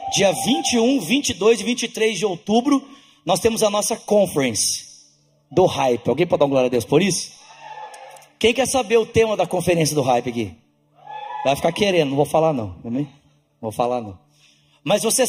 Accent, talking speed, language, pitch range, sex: Brazilian, 180 wpm, Portuguese, 155-240 Hz, male